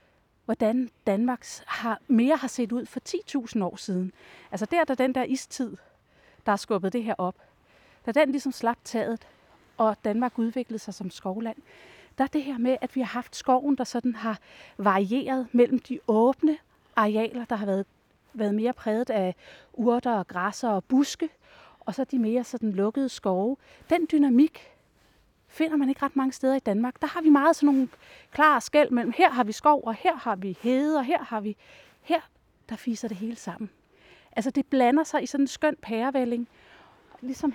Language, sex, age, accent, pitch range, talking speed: Danish, female, 30-49, native, 225-285 Hz, 185 wpm